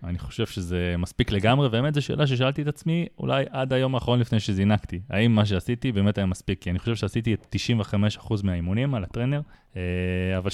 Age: 20-39